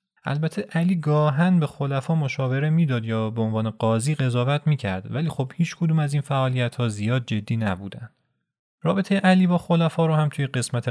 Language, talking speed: Persian, 180 wpm